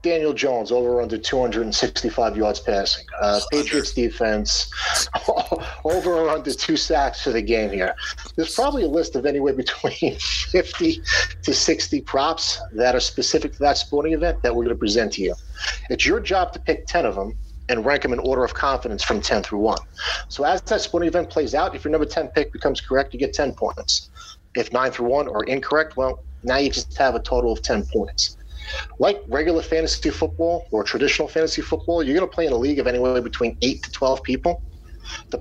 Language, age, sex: English, 40-59, male